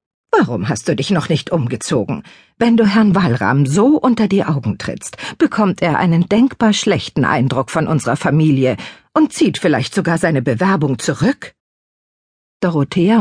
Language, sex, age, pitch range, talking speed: German, female, 50-69, 125-170 Hz, 150 wpm